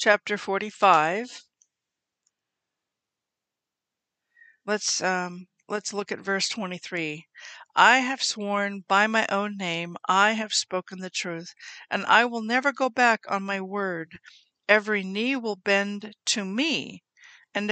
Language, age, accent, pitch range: English, 60-79, American, 185-225 Hz